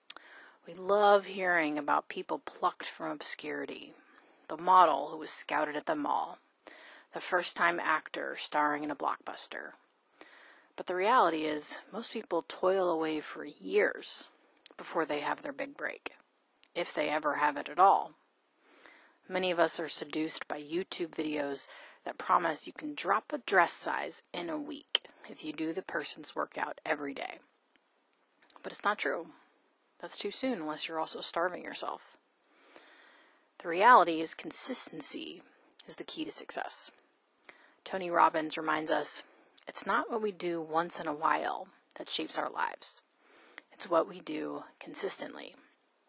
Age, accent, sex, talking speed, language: 30-49, American, female, 150 wpm, English